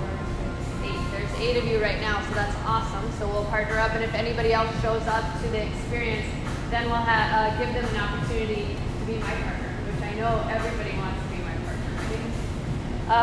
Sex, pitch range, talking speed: female, 235-270 Hz, 185 wpm